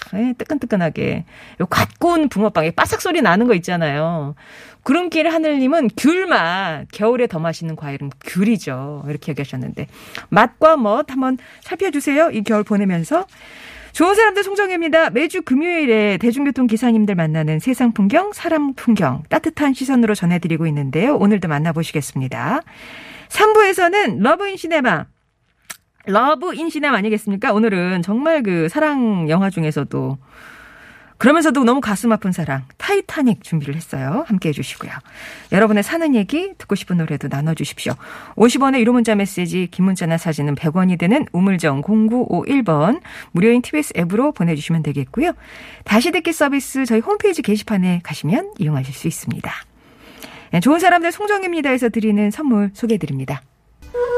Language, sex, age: Korean, female, 40-59